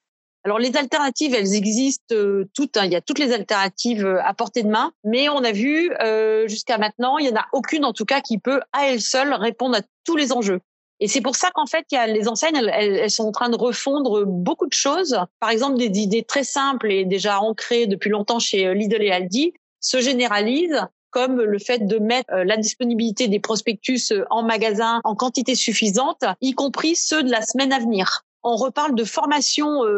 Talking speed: 205 wpm